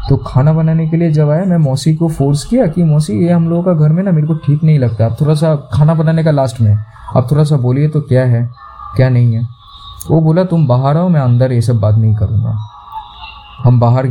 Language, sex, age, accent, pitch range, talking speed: Hindi, male, 20-39, native, 125-180 Hz, 220 wpm